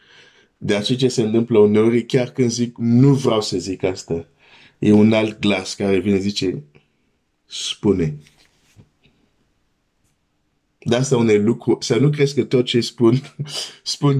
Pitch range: 100-125 Hz